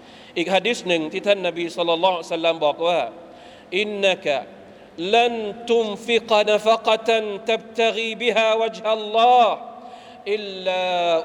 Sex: male